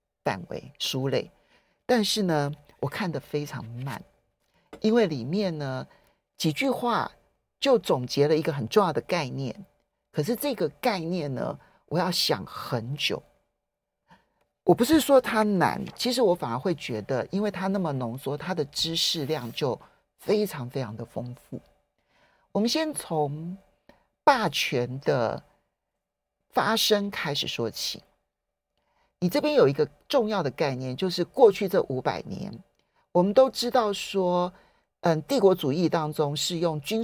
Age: 50-69